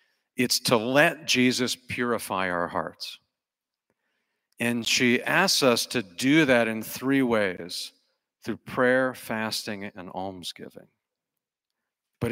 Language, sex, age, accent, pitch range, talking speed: English, male, 50-69, American, 110-135 Hz, 110 wpm